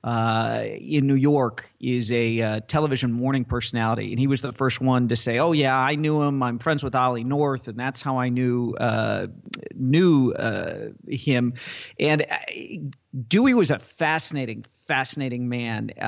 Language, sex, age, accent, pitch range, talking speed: English, male, 40-59, American, 125-150 Hz, 165 wpm